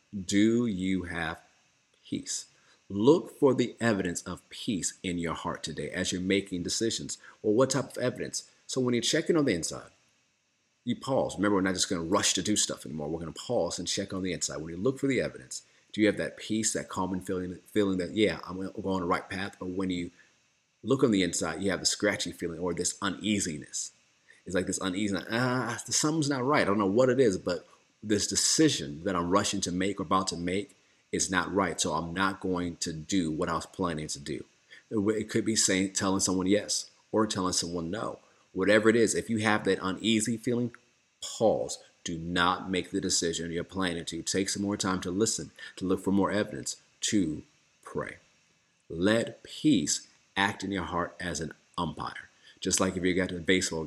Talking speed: 215 wpm